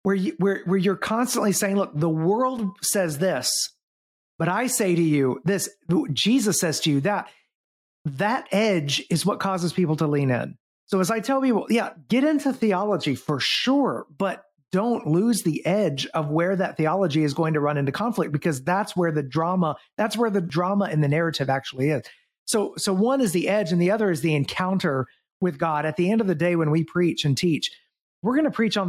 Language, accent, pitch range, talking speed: English, American, 150-195 Hz, 210 wpm